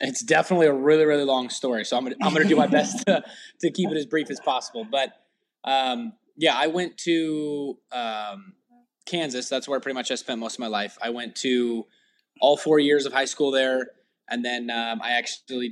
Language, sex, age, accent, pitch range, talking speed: English, male, 20-39, American, 120-145 Hz, 210 wpm